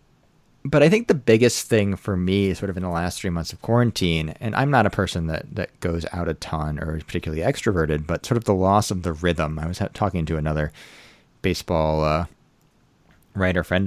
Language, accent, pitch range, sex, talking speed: English, American, 85-110 Hz, male, 215 wpm